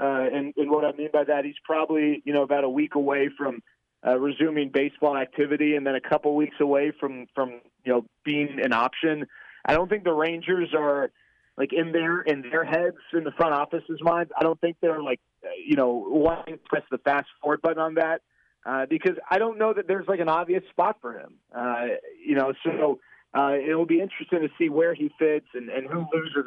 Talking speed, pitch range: 220 wpm, 145-170 Hz